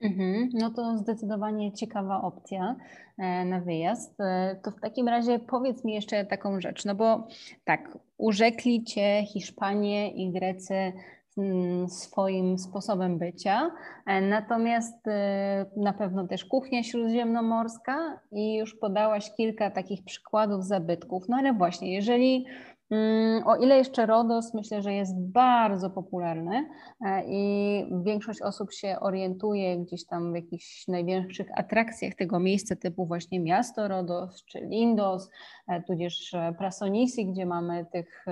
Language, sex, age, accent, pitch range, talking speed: Polish, female, 20-39, native, 190-230 Hz, 120 wpm